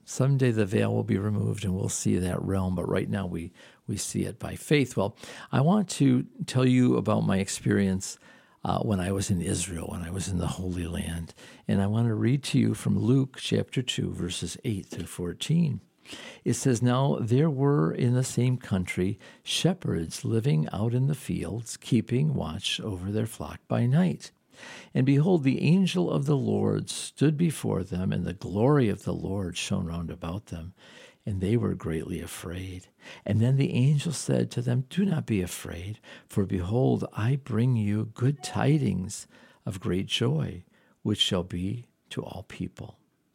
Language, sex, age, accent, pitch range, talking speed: English, male, 50-69, American, 95-130 Hz, 180 wpm